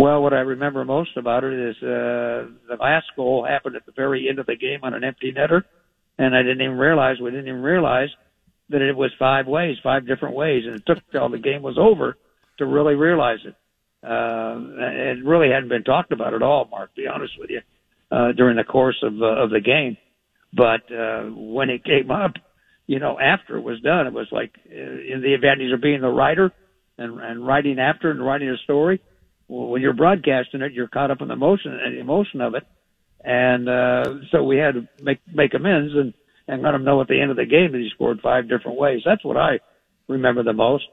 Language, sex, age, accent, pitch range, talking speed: English, male, 60-79, American, 125-175 Hz, 225 wpm